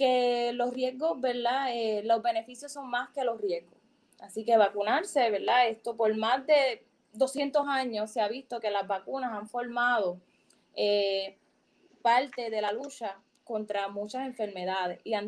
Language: Spanish